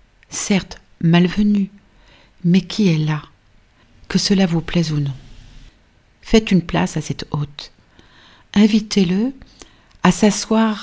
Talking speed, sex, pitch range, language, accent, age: 115 wpm, female, 155-185 Hz, French, French, 50-69